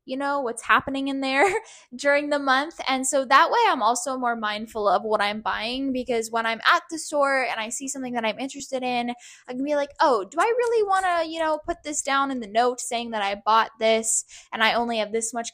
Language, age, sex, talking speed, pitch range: English, 10-29, female, 245 wpm, 230-285 Hz